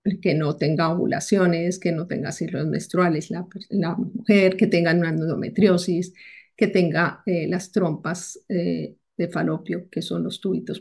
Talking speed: 155 wpm